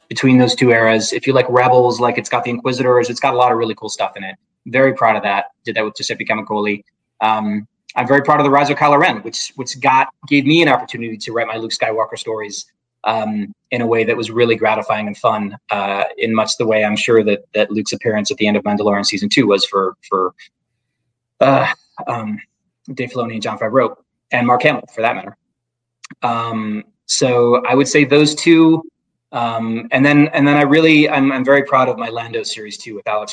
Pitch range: 110-135 Hz